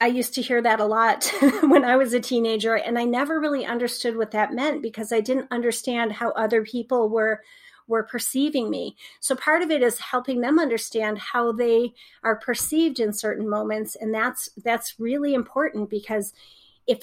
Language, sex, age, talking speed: English, female, 40-59, 185 wpm